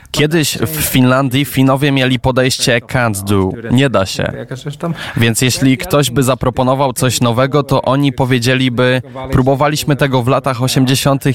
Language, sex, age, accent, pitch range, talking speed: Polish, male, 20-39, native, 120-135 Hz, 135 wpm